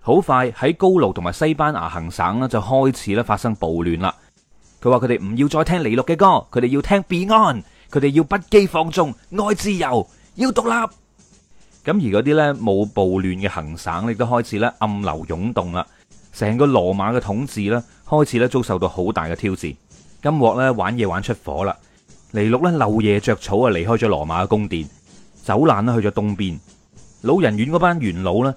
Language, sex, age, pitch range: Chinese, male, 30-49, 100-145 Hz